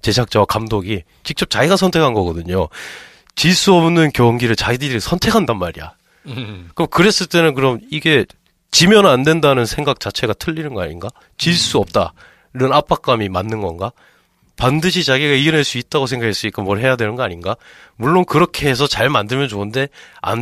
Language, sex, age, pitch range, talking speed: English, male, 30-49, 105-155 Hz, 140 wpm